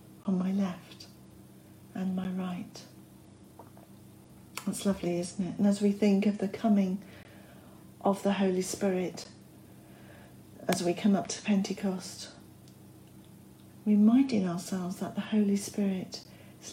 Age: 40-59